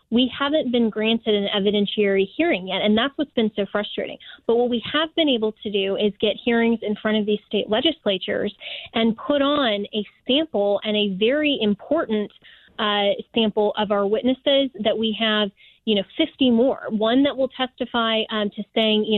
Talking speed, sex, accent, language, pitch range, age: 190 wpm, female, American, English, 205-235 Hz, 20-39